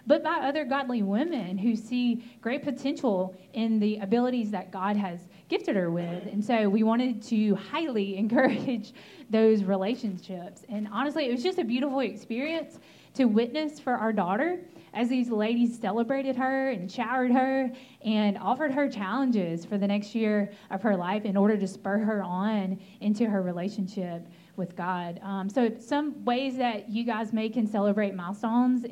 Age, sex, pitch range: 20-39, female, 205-255 Hz